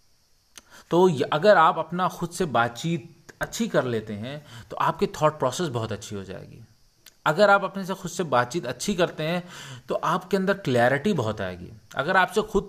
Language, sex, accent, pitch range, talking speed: Hindi, male, native, 120-170 Hz, 180 wpm